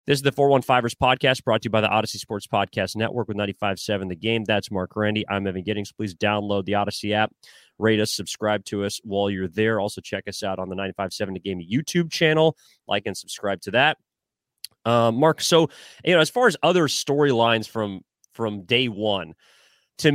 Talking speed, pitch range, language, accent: 205 wpm, 100-130 Hz, English, American